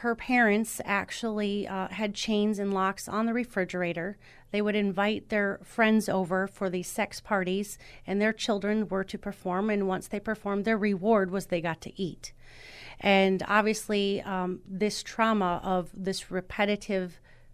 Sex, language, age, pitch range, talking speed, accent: female, English, 30-49, 185-215 Hz, 155 wpm, American